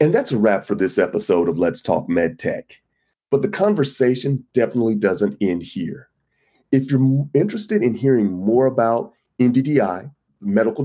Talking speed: 155 wpm